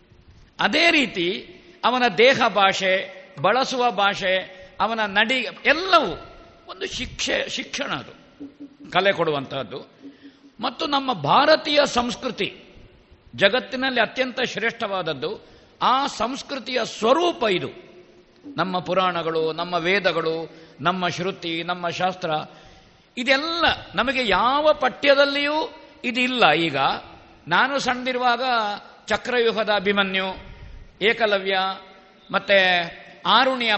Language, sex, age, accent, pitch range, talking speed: Kannada, male, 50-69, native, 185-275 Hz, 85 wpm